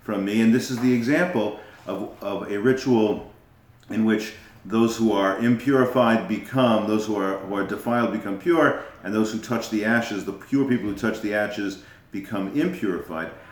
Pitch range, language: 105-130 Hz, English